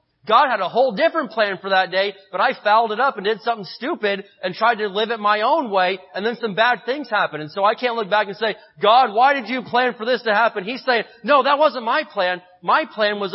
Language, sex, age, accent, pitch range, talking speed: English, male, 30-49, American, 175-230 Hz, 265 wpm